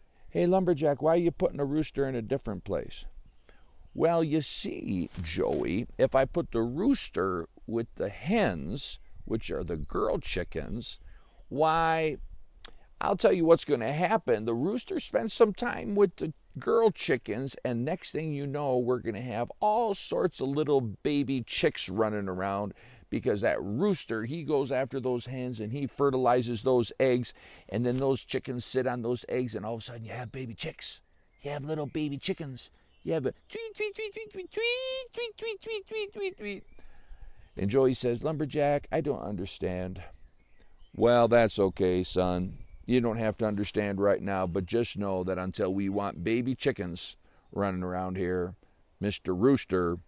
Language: English